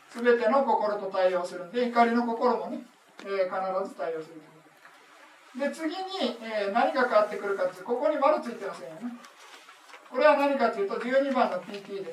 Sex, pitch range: male, 195-270 Hz